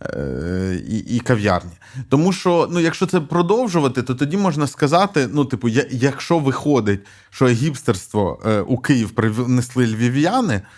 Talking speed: 135 wpm